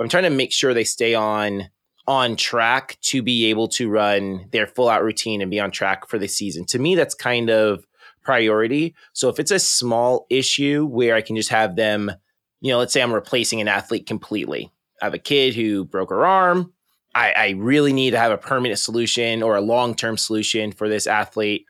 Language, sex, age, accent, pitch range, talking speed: English, male, 20-39, American, 105-130 Hz, 210 wpm